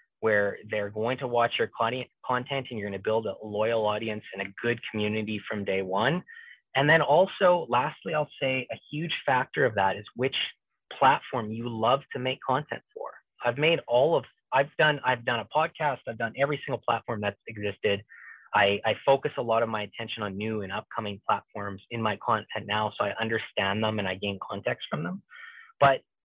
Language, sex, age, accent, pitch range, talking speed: English, male, 30-49, American, 105-130 Hz, 195 wpm